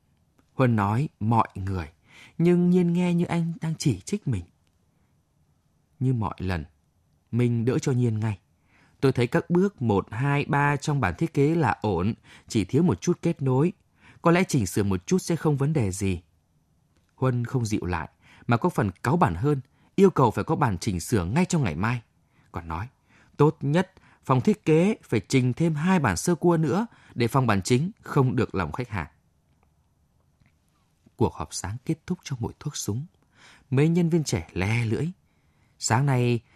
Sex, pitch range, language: male, 100-150 Hz, Vietnamese